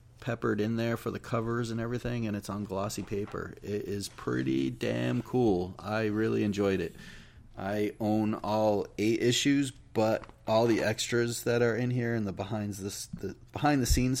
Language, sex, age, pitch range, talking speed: English, male, 30-49, 100-120 Hz, 180 wpm